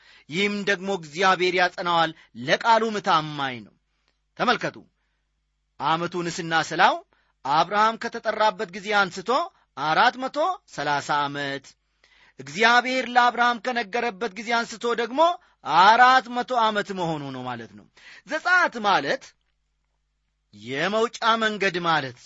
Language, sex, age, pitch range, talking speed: Amharic, male, 30-49, 155-230 Hz, 90 wpm